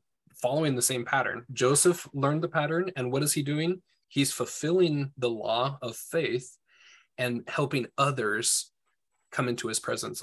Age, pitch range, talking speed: 20-39, 120-145 Hz, 155 wpm